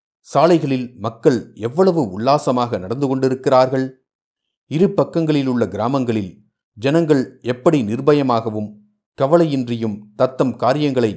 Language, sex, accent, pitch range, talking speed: Tamil, male, native, 110-150 Hz, 80 wpm